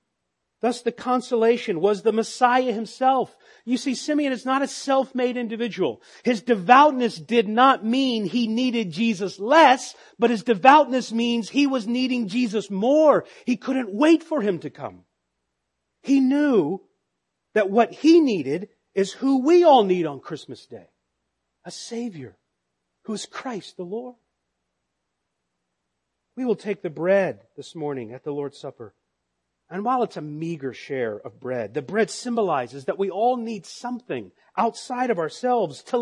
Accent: American